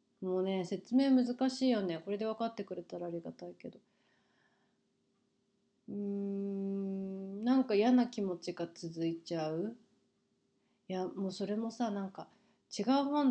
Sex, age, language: female, 30-49, Japanese